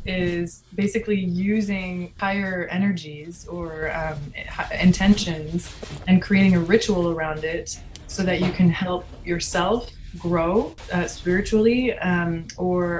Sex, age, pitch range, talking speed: female, 20-39, 165-190 Hz, 115 wpm